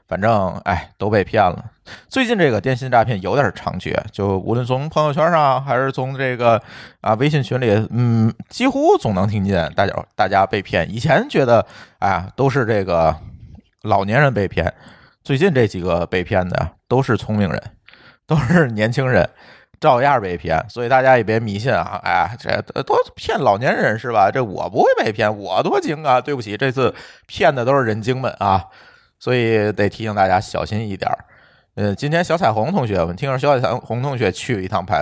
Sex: male